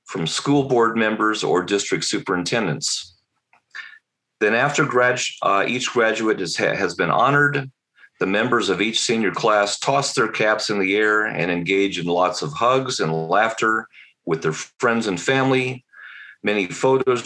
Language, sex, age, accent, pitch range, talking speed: English, male, 40-59, American, 90-120 Hz, 145 wpm